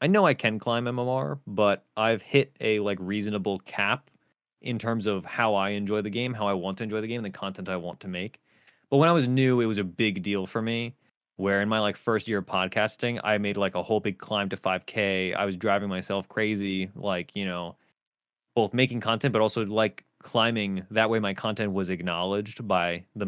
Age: 20-39